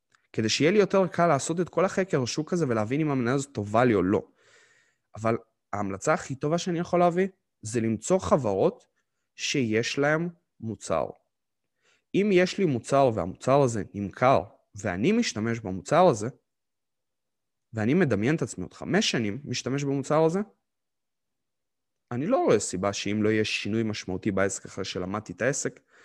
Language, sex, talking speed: Hebrew, male, 150 wpm